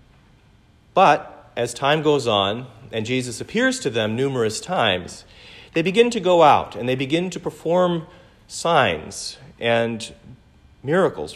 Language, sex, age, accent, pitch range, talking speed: English, male, 40-59, American, 110-150 Hz, 130 wpm